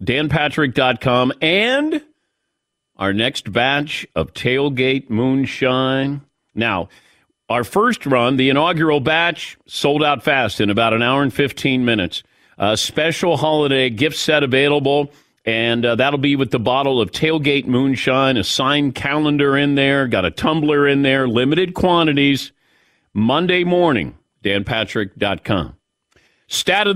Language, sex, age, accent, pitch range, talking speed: English, male, 40-59, American, 120-155 Hz, 130 wpm